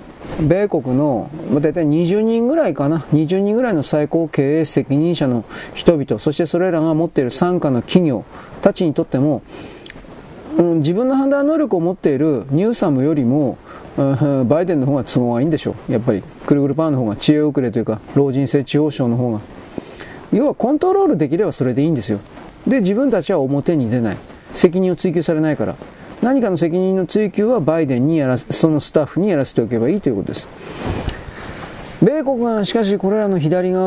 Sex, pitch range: male, 135-180 Hz